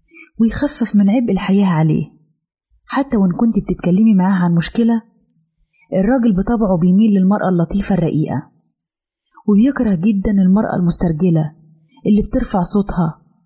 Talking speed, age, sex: 110 wpm, 20-39, female